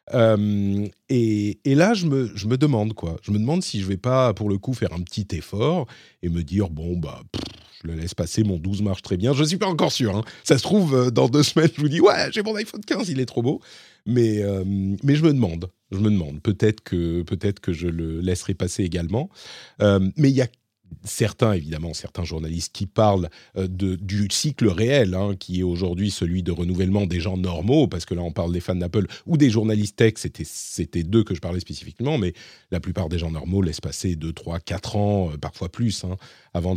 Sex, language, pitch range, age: male, French, 90-125 Hz, 40-59